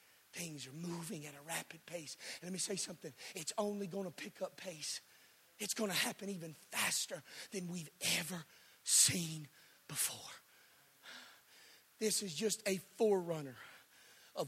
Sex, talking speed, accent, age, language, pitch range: male, 150 wpm, American, 40-59, English, 150-200 Hz